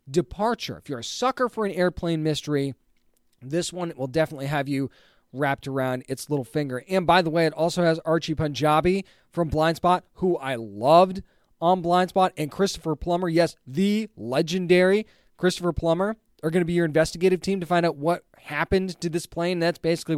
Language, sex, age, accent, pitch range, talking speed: English, male, 20-39, American, 150-185 Hz, 180 wpm